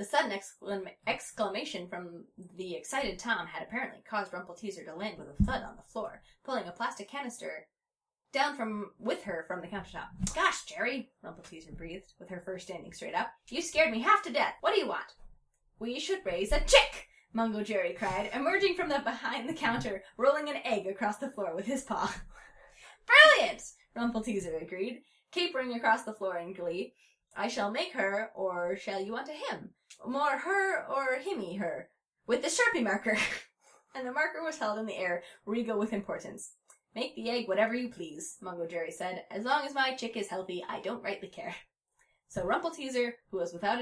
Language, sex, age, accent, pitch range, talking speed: English, female, 10-29, American, 195-280 Hz, 190 wpm